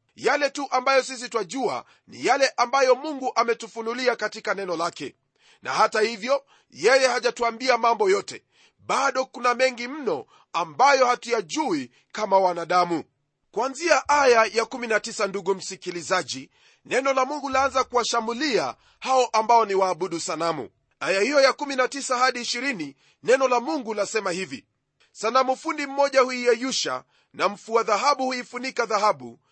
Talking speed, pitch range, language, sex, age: 130 wpm, 215-265 Hz, Swahili, male, 40-59